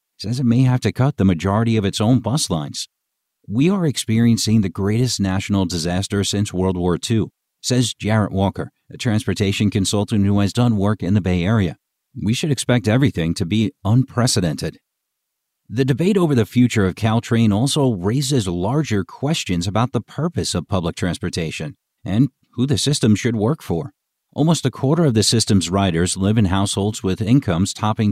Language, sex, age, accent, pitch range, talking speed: English, male, 50-69, American, 95-125 Hz, 175 wpm